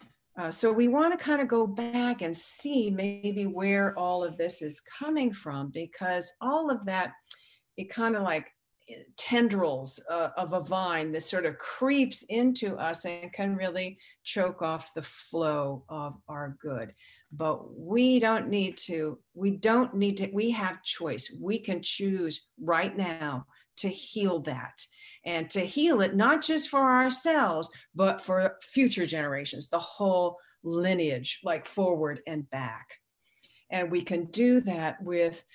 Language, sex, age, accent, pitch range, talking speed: English, female, 50-69, American, 165-225 Hz, 155 wpm